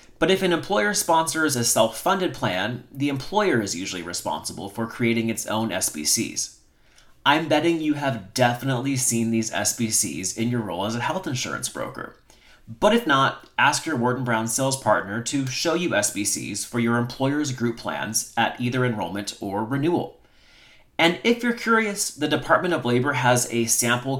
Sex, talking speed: male, 170 wpm